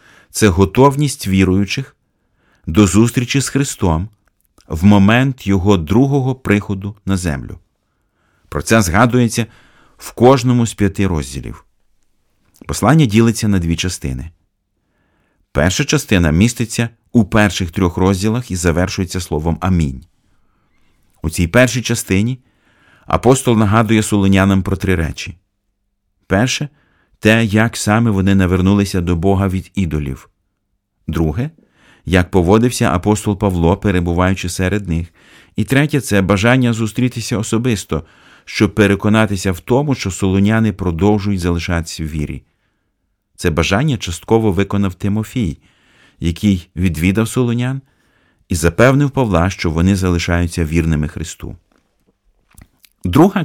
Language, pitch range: Ukrainian, 90-115 Hz